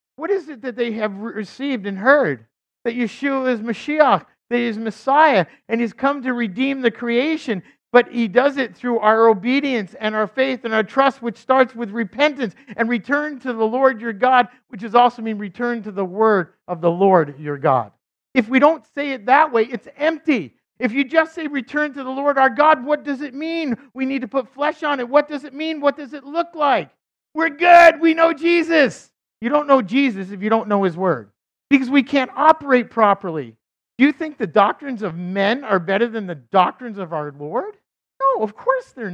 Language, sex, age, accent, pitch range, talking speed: English, male, 50-69, American, 190-275 Hz, 215 wpm